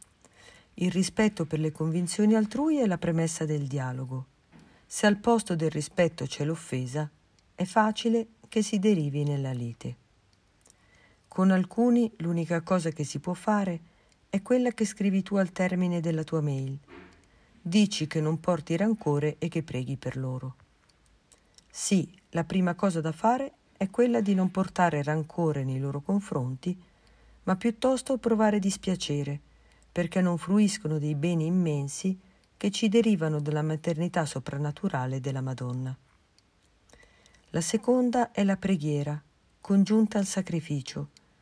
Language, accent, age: Italian, native, 50-69